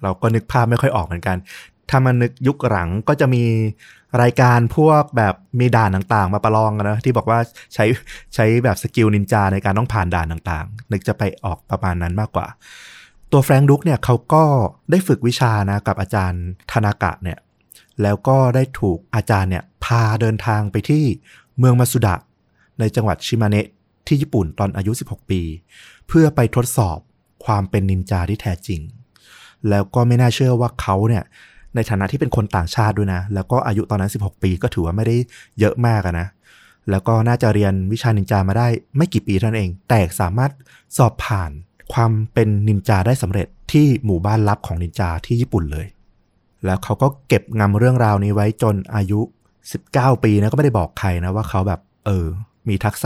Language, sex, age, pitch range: Thai, male, 20-39, 95-120 Hz